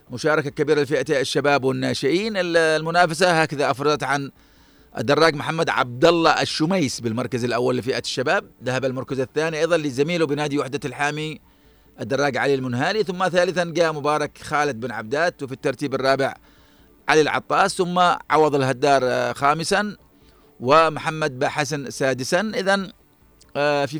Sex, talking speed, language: male, 125 wpm, Arabic